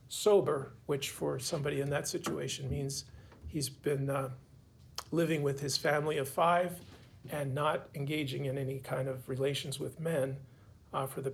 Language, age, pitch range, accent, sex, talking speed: English, 40-59, 130-165 Hz, American, male, 160 wpm